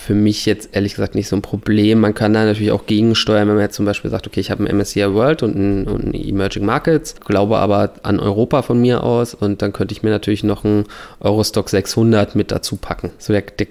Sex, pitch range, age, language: male, 100-110 Hz, 20-39, German